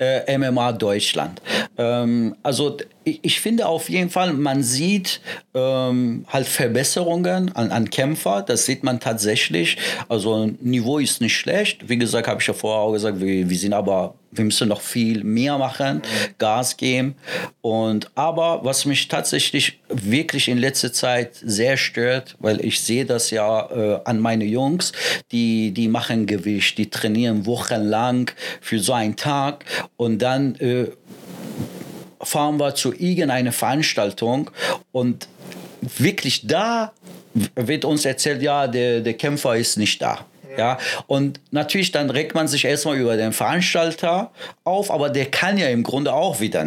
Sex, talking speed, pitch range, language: male, 155 wpm, 110-145 Hz, German